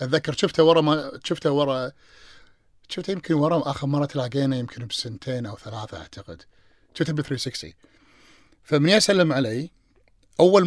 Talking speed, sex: 135 wpm, male